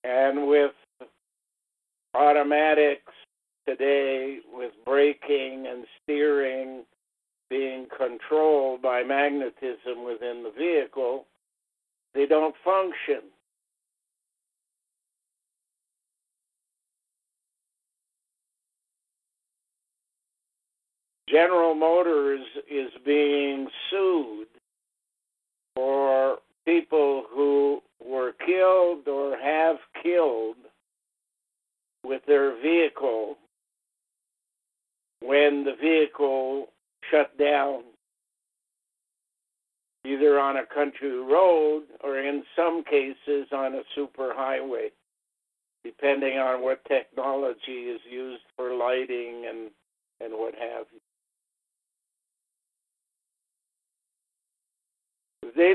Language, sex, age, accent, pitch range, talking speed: English, male, 60-79, American, 135-155 Hz, 70 wpm